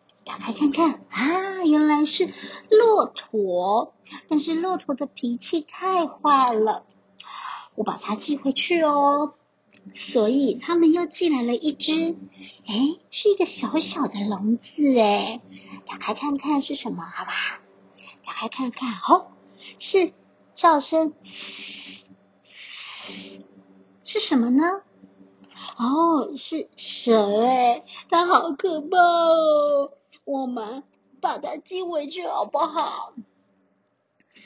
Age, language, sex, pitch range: 50-69, Chinese, male, 225-330 Hz